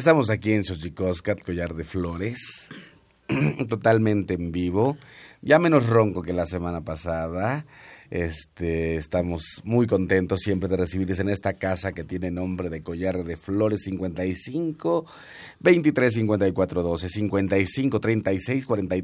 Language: Spanish